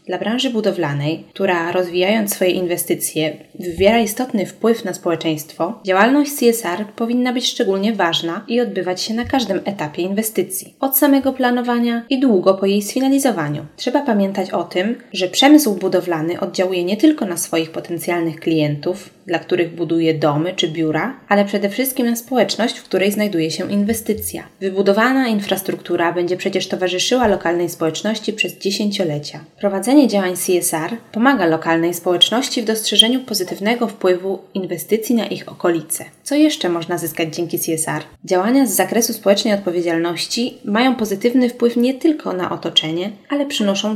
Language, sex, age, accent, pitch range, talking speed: Polish, female, 20-39, native, 175-230 Hz, 145 wpm